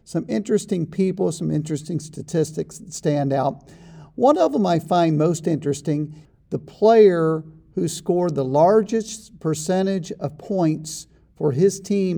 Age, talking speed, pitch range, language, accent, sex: 50-69, 140 wpm, 150-185 Hz, English, American, male